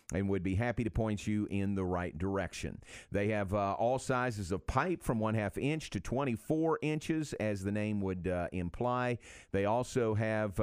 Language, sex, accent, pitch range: English, male, American, 100-135 Hz